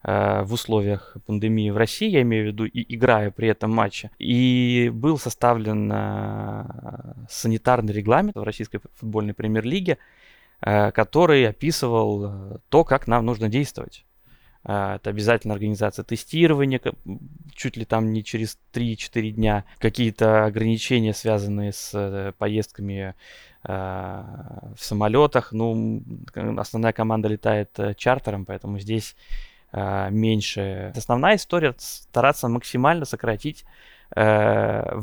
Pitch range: 105-120 Hz